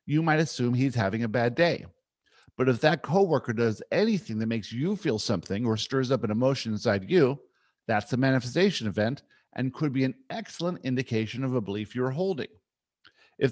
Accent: American